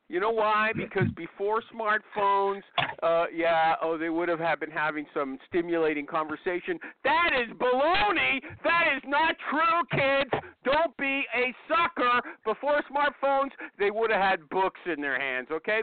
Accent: American